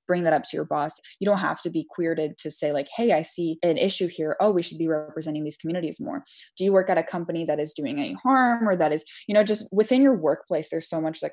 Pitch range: 155-185 Hz